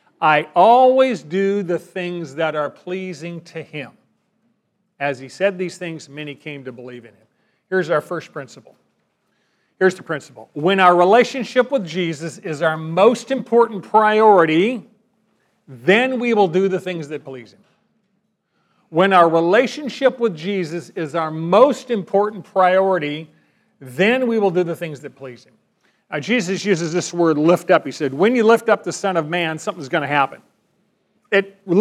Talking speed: 165 wpm